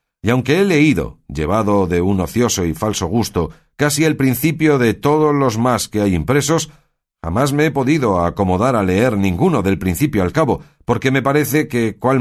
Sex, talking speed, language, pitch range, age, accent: male, 185 wpm, Spanish, 95-145 Hz, 50-69, Spanish